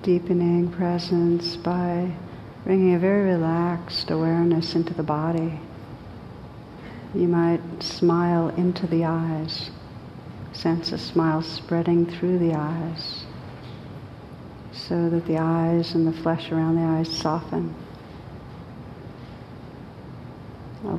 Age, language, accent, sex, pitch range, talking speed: 60-79, English, American, female, 135-170 Hz, 105 wpm